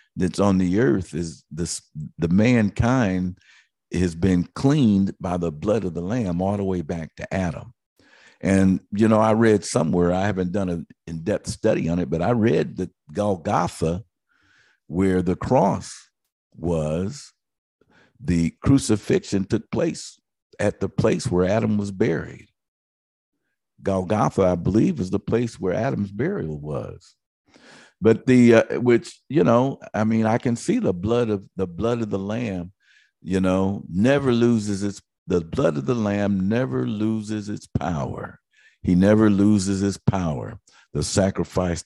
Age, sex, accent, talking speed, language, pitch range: 50-69, male, American, 155 wpm, English, 85-110 Hz